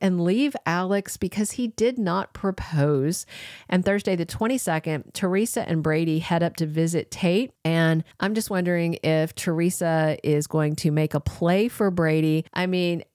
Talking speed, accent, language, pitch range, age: 165 wpm, American, English, 155-195 Hz, 40-59